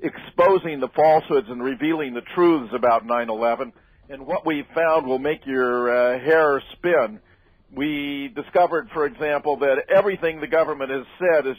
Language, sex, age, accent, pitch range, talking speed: English, male, 50-69, American, 135-165 Hz, 160 wpm